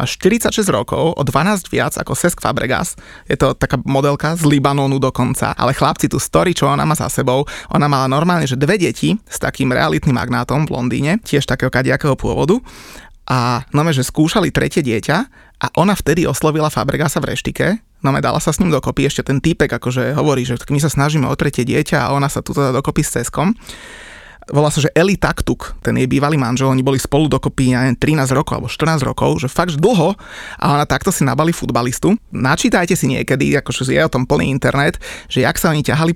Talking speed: 205 wpm